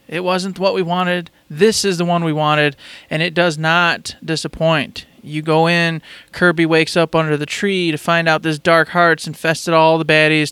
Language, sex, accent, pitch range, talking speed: English, male, American, 155-185 Hz, 200 wpm